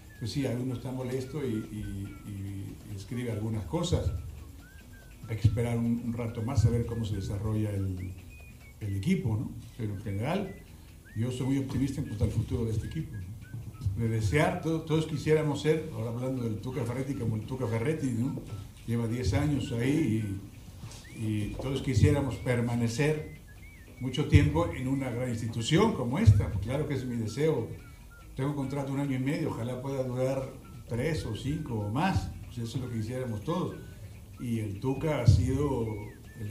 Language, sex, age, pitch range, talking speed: Spanish, male, 60-79, 105-130 Hz, 180 wpm